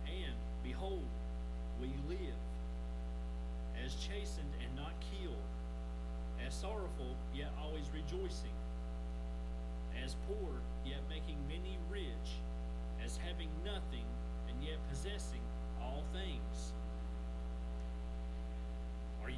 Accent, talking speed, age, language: American, 90 wpm, 50-69, English